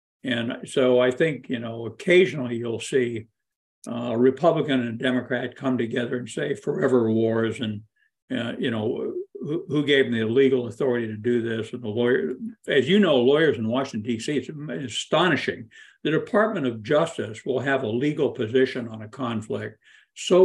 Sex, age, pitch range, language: male, 60-79, 115-175 Hz, English